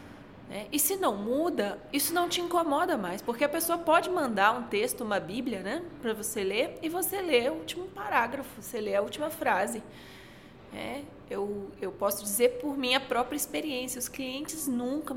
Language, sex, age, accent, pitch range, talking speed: Portuguese, female, 20-39, Brazilian, 205-300 Hz, 180 wpm